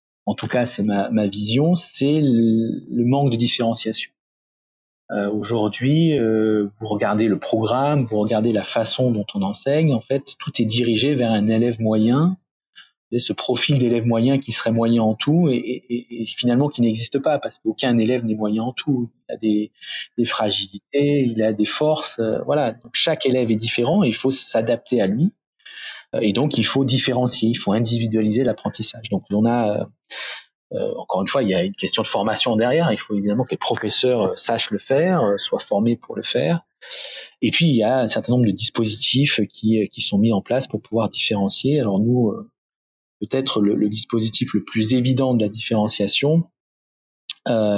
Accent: French